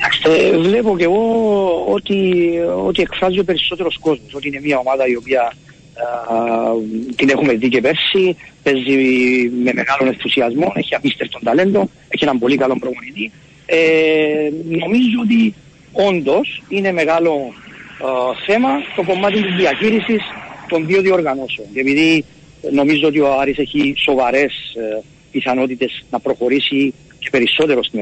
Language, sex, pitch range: Greek, male, 130-180 Hz